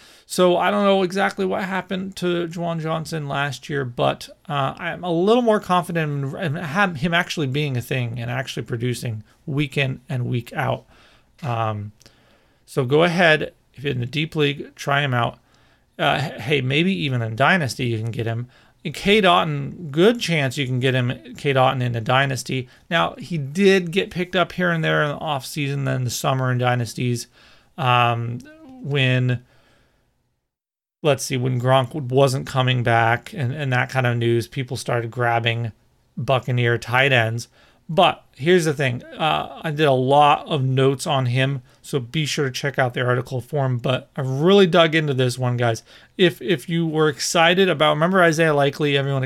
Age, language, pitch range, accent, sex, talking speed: 40-59, English, 125-160 Hz, American, male, 180 wpm